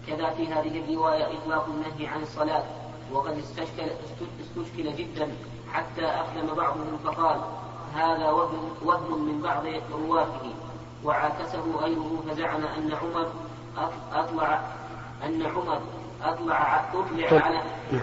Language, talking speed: Arabic, 105 wpm